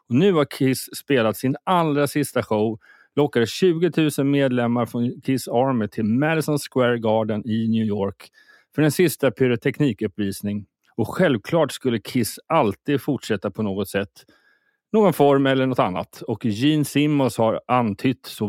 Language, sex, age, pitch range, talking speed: Swedish, male, 30-49, 105-145 Hz, 155 wpm